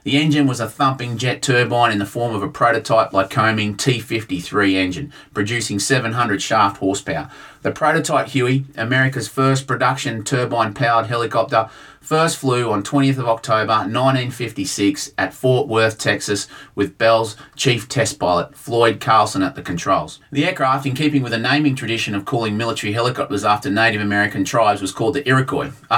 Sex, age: male, 30-49